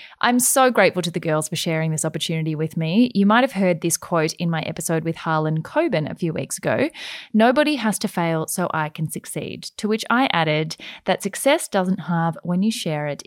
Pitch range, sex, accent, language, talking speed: 160-215 Hz, female, Australian, English, 215 wpm